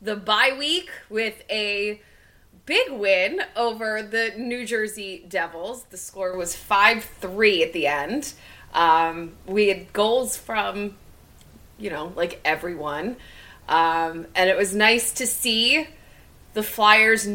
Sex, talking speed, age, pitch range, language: female, 130 wpm, 20-39, 195-255 Hz, English